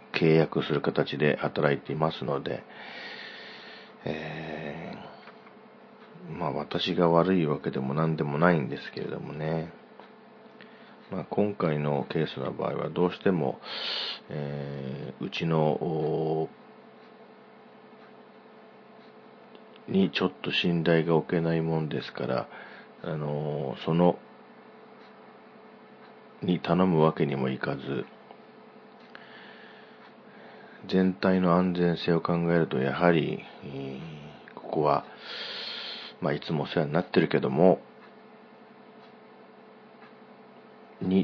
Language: Japanese